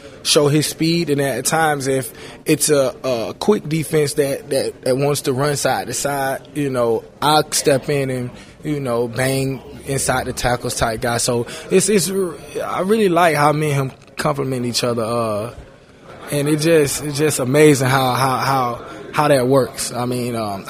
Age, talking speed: 20-39, 185 wpm